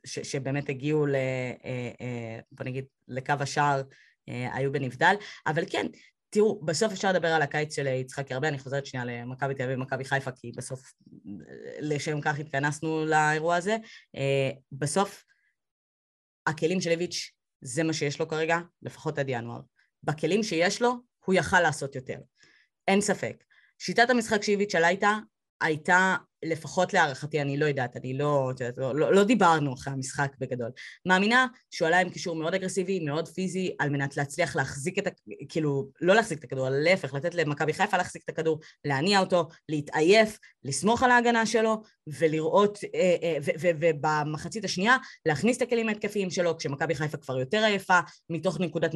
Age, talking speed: 20-39, 165 wpm